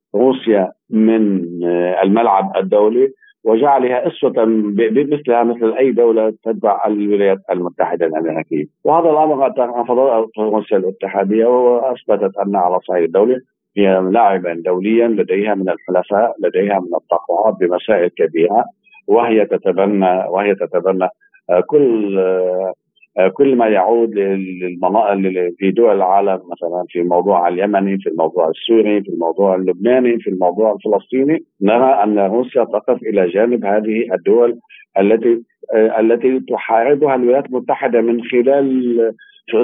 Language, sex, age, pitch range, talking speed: Arabic, male, 50-69, 100-135 Hz, 115 wpm